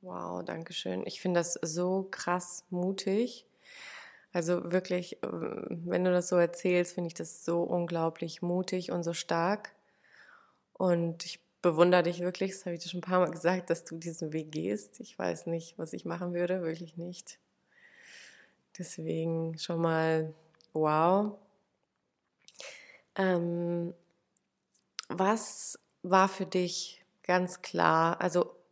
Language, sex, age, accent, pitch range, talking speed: German, female, 20-39, German, 170-195 Hz, 135 wpm